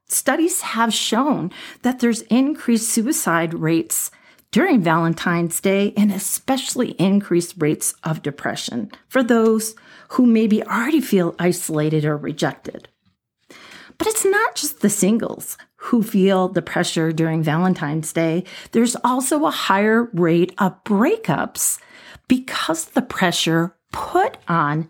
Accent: American